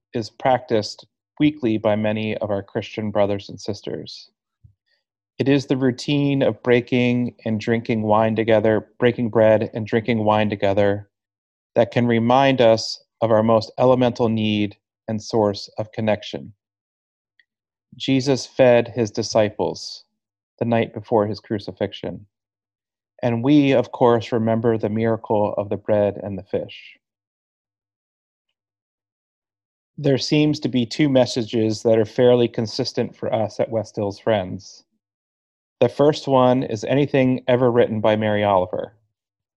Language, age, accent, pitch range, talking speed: English, 30-49, American, 105-125 Hz, 135 wpm